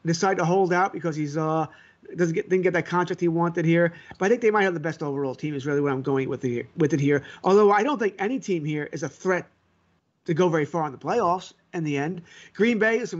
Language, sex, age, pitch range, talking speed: English, male, 30-49, 160-195 Hz, 270 wpm